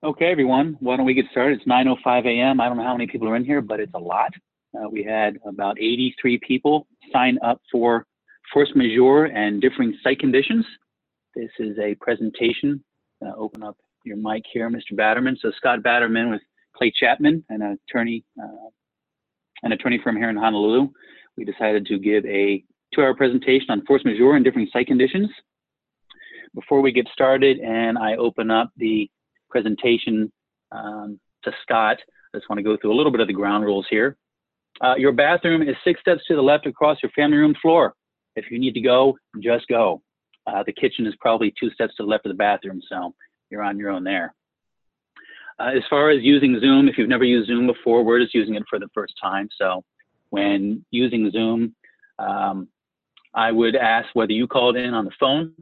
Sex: male